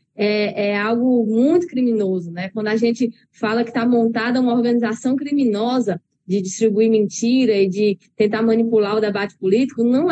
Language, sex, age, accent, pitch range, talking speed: Portuguese, female, 10-29, Brazilian, 215-255 Hz, 160 wpm